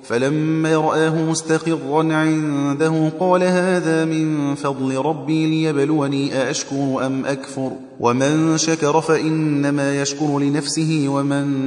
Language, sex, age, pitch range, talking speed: Persian, male, 30-49, 135-155 Hz, 100 wpm